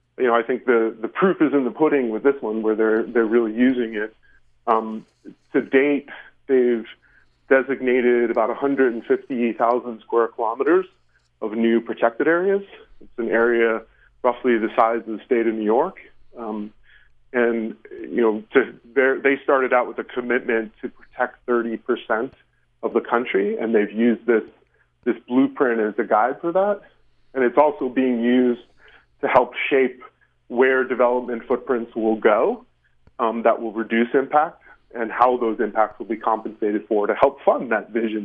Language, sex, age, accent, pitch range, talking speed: English, male, 40-59, American, 110-130 Hz, 165 wpm